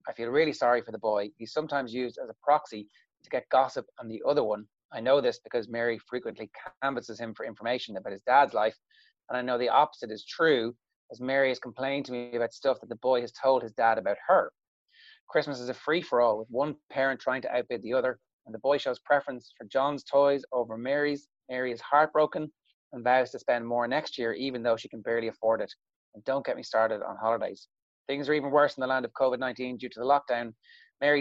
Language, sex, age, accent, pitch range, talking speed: English, male, 30-49, Irish, 120-140 Hz, 225 wpm